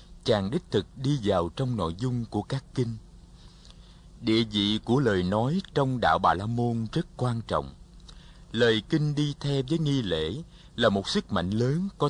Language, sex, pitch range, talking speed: Vietnamese, male, 90-135 Hz, 185 wpm